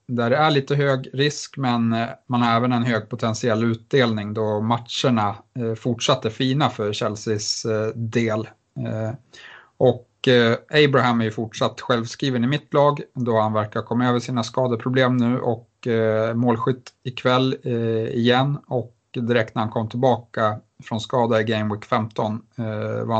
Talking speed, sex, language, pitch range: 140 wpm, male, Swedish, 110-125 Hz